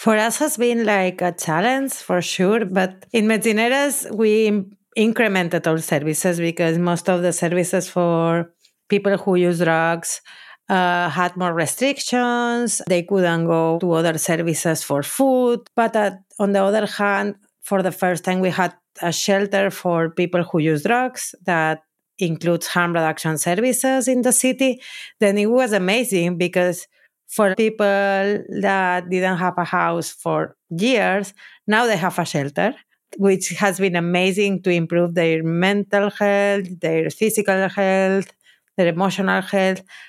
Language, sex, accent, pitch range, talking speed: English, female, Spanish, 165-205 Hz, 150 wpm